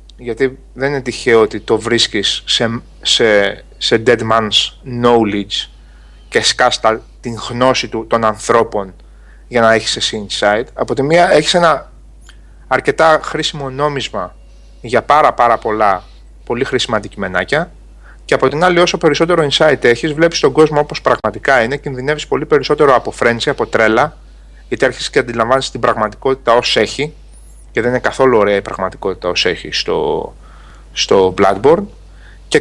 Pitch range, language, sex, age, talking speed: 110-170 Hz, Greek, male, 30-49, 150 wpm